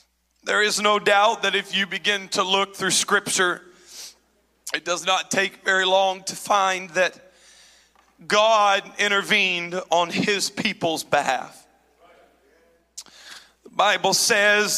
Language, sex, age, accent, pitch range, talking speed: English, male, 40-59, American, 190-230 Hz, 120 wpm